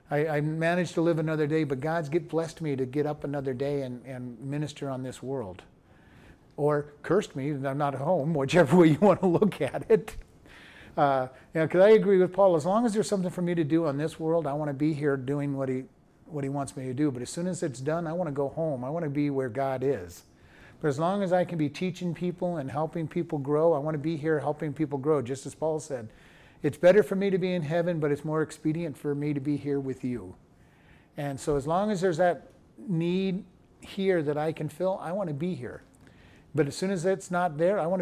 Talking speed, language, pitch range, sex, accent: 255 wpm, English, 140-175 Hz, male, American